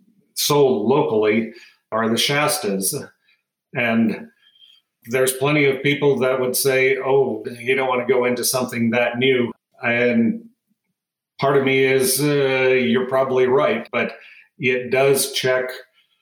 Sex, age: male, 40-59